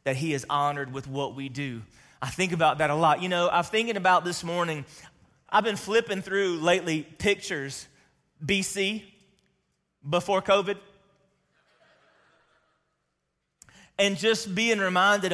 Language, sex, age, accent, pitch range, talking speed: English, male, 30-49, American, 150-195 Hz, 135 wpm